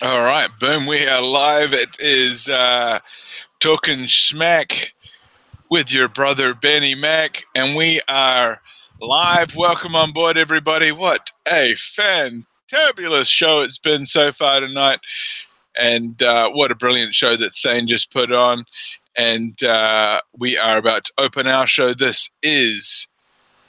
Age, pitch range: 20-39, 125-155 Hz